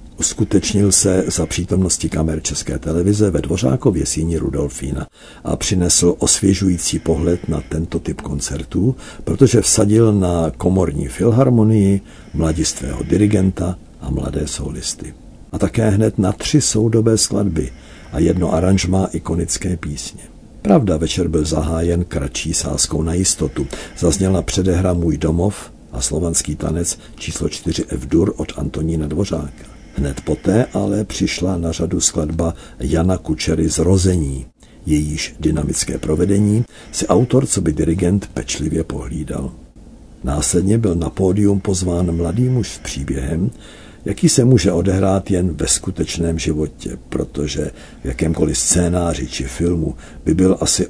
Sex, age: male, 50-69